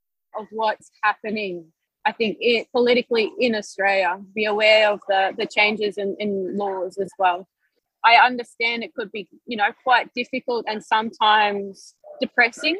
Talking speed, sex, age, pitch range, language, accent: 150 wpm, female, 20-39, 210-250 Hz, English, Australian